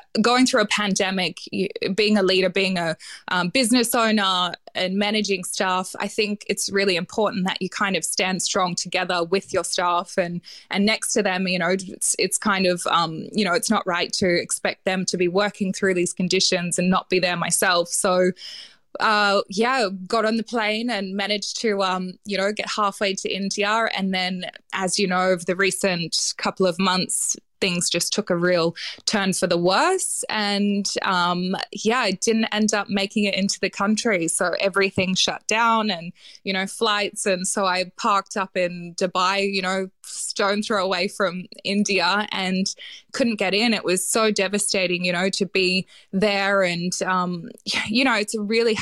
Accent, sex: Australian, female